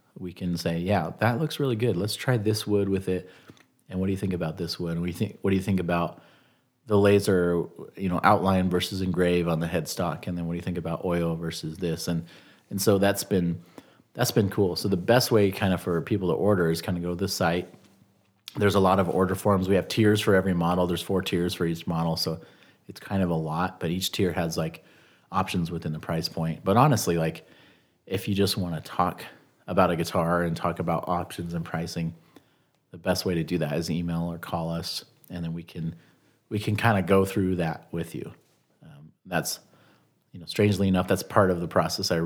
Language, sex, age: English, male, 30-49